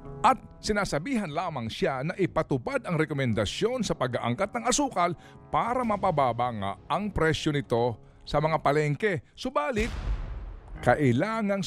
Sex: male